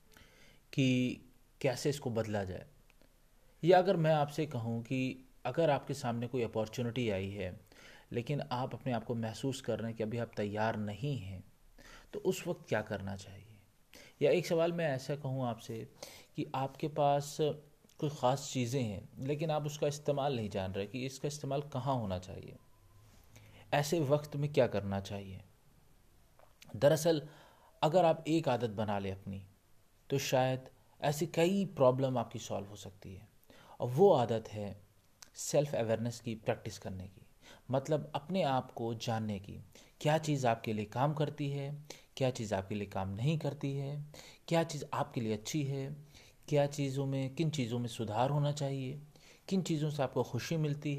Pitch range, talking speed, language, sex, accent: 110-145 Hz, 165 wpm, Hindi, male, native